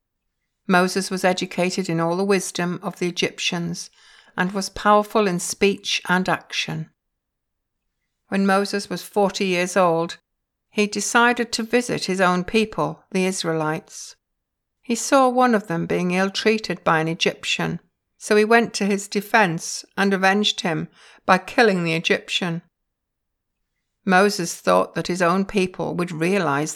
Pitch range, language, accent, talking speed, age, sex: 175-220 Hz, English, British, 140 wpm, 60-79, female